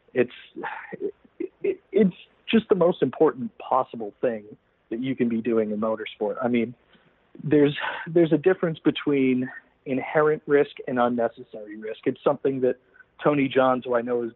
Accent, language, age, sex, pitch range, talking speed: American, English, 40-59, male, 120-140 Hz, 160 wpm